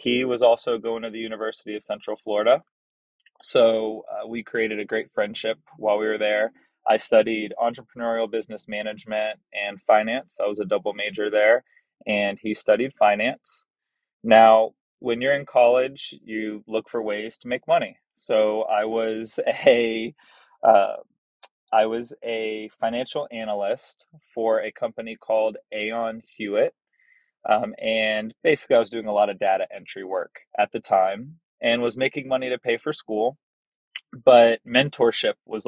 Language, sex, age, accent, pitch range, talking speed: English, male, 20-39, American, 110-125 Hz, 150 wpm